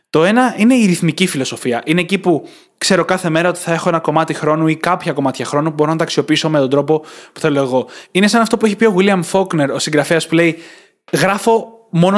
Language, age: Greek, 20-39